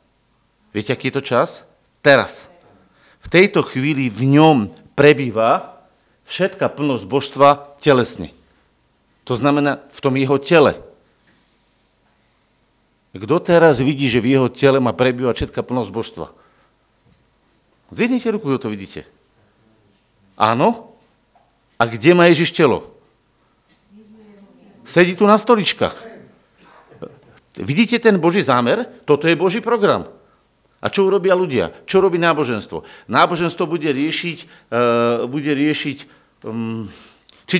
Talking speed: 115 wpm